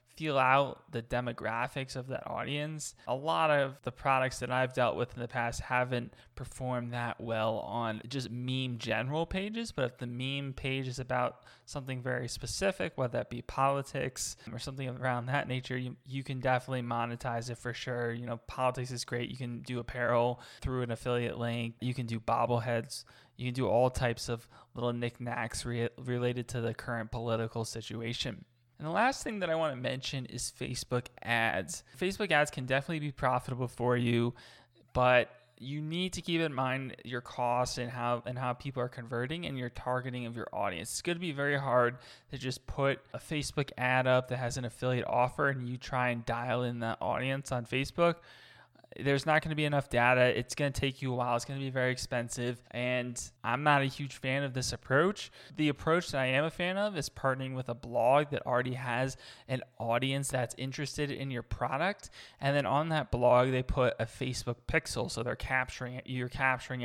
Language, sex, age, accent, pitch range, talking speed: English, male, 20-39, American, 120-135 Hz, 200 wpm